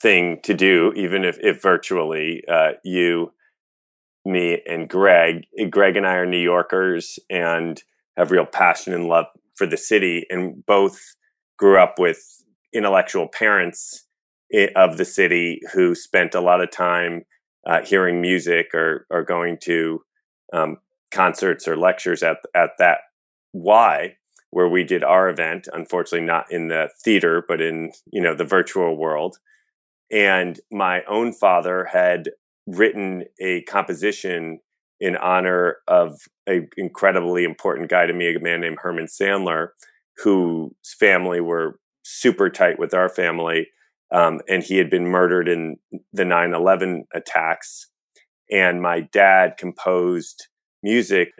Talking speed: 140 wpm